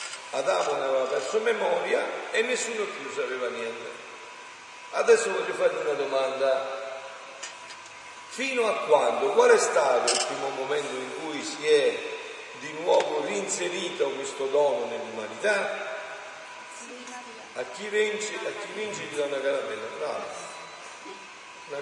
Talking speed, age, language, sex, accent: 120 wpm, 50-69, Italian, male, native